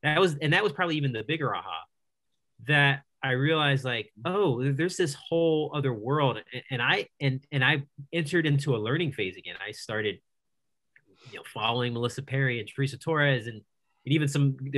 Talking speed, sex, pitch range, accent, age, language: 185 wpm, male, 120-145 Hz, American, 30-49, English